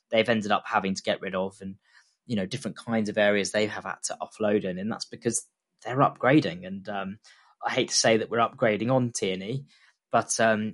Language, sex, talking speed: English, male, 220 wpm